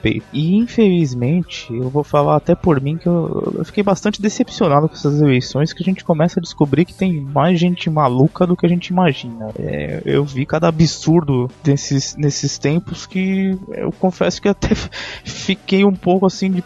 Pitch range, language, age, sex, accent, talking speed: 135-175 Hz, Portuguese, 20-39, male, Brazilian, 185 wpm